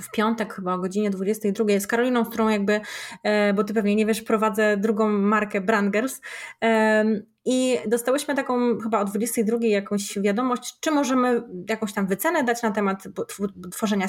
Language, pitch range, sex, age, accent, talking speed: Polish, 215-265 Hz, female, 20-39, native, 160 wpm